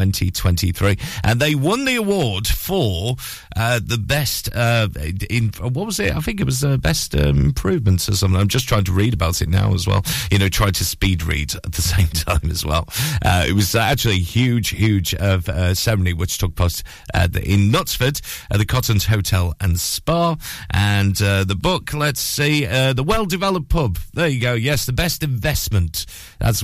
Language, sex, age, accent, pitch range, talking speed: English, male, 40-59, British, 95-135 Hz, 205 wpm